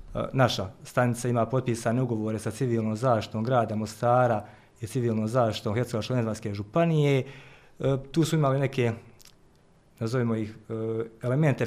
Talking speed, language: 115 wpm, Croatian